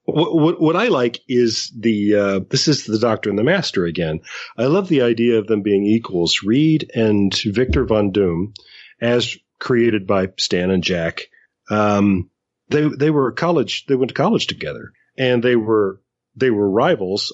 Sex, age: male, 40-59